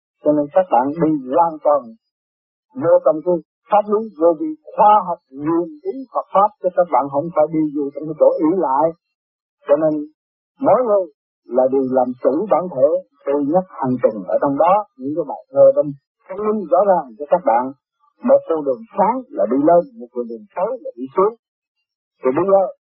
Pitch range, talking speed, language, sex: 170-265 Hz, 210 wpm, Vietnamese, male